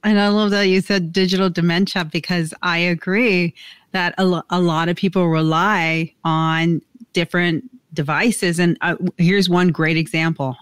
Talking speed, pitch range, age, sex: 160 wpm, 160-190 Hz, 30-49, female